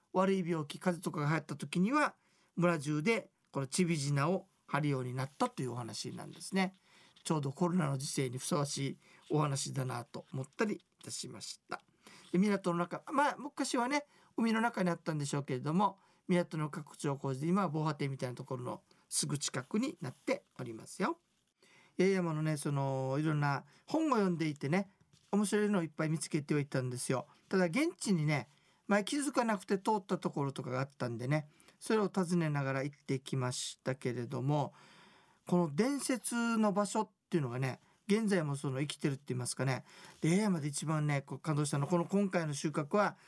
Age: 40-59